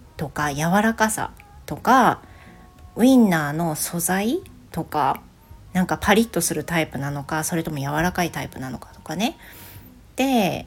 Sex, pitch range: female, 150-225 Hz